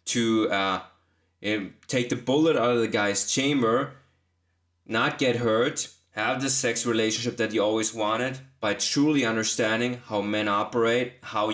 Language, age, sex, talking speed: English, 20-39, male, 145 wpm